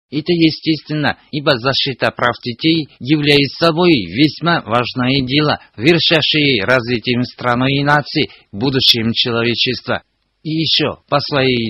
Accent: native